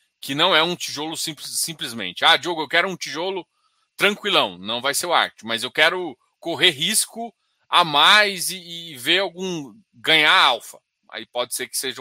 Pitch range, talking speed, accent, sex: 130-175 Hz, 180 wpm, Brazilian, male